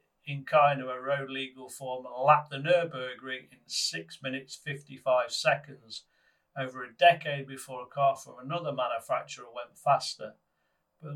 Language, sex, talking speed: English, male, 150 wpm